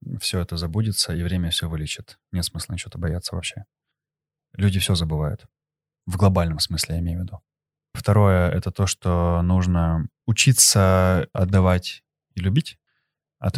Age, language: 20-39, Russian